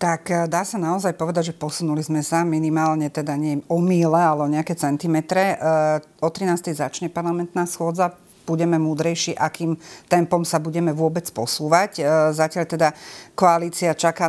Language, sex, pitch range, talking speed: Slovak, female, 145-165 Hz, 145 wpm